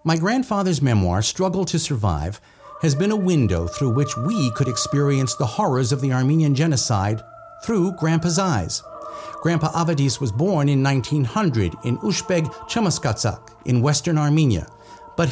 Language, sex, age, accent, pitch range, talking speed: English, male, 50-69, American, 120-175 Hz, 145 wpm